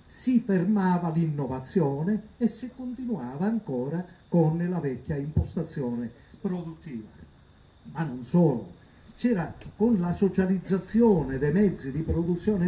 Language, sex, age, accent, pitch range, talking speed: Italian, male, 50-69, native, 135-190 Hz, 110 wpm